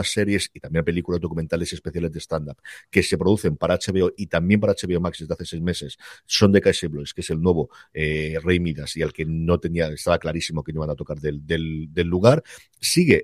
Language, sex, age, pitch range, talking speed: Spanish, male, 50-69, 85-110 Hz, 220 wpm